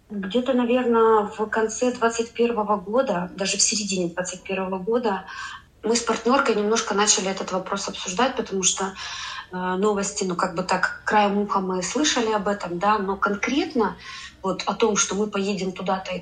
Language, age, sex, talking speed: Russian, 20-39, female, 160 wpm